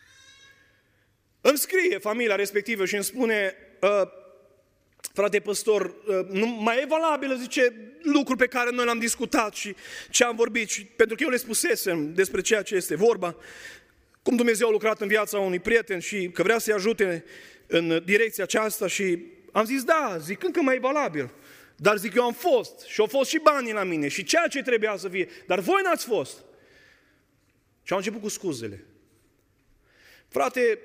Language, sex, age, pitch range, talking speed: Romanian, male, 30-49, 170-245 Hz, 170 wpm